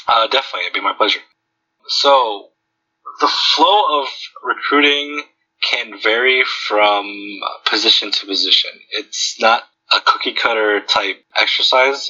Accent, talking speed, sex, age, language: American, 115 wpm, male, 20-39, English